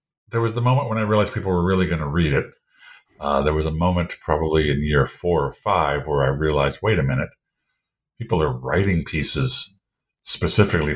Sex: male